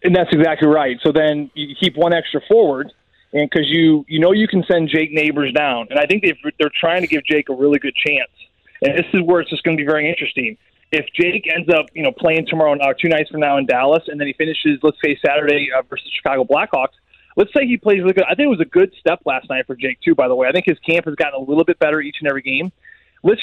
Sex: male